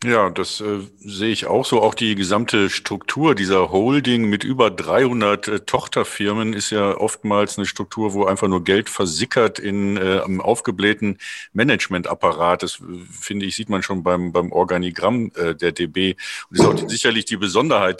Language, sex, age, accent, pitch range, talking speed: German, male, 50-69, German, 100-130 Hz, 175 wpm